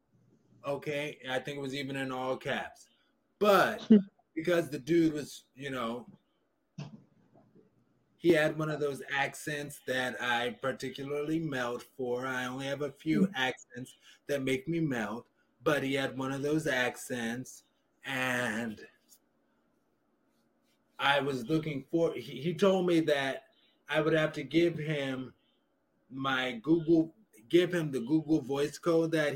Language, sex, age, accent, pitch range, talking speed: English, male, 20-39, American, 130-160 Hz, 140 wpm